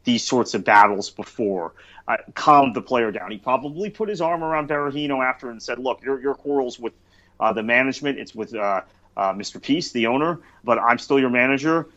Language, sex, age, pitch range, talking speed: English, male, 30-49, 110-130 Hz, 205 wpm